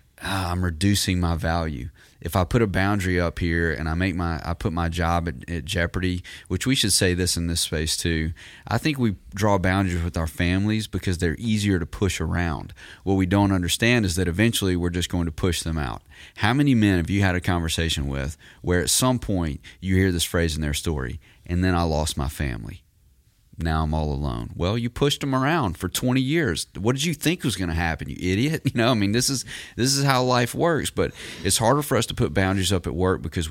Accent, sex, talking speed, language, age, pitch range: American, male, 235 wpm, English, 30-49, 85-105 Hz